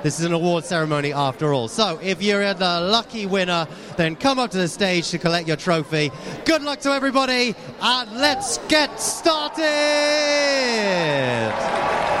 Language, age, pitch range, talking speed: English, 30-49, 195-275 Hz, 150 wpm